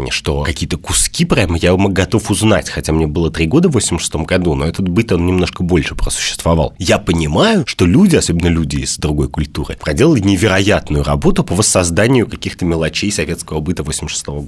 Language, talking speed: Russian, 170 wpm